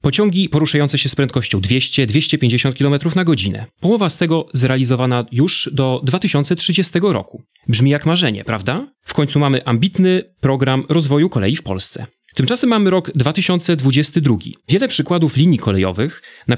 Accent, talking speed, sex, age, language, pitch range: native, 140 wpm, male, 30-49, Polish, 125-170 Hz